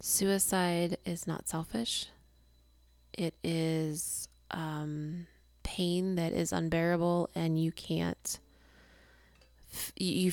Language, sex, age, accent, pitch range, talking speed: English, female, 20-39, American, 155-175 Hz, 95 wpm